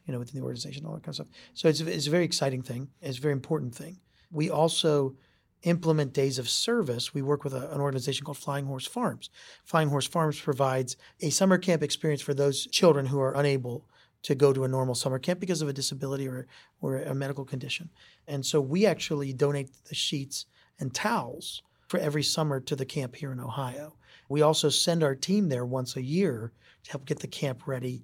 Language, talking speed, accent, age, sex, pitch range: English, 215 wpm, American, 40-59, male, 135-165 Hz